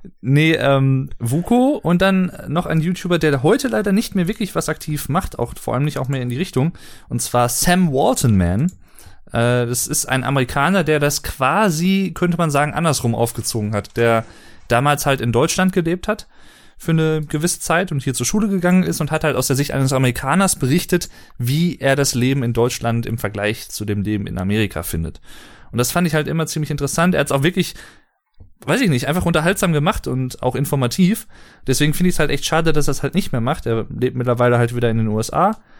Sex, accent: male, German